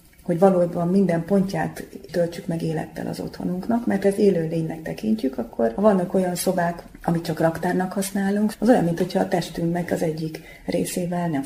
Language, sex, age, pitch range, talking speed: Hungarian, female, 30-49, 160-195 Hz, 180 wpm